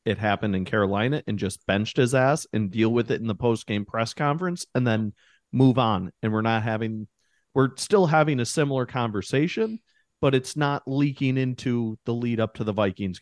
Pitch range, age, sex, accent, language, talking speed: 110-140 Hz, 40-59, male, American, English, 195 wpm